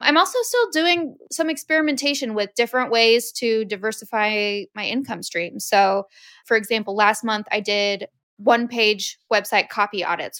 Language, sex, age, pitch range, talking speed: English, female, 20-39, 205-255 Hz, 150 wpm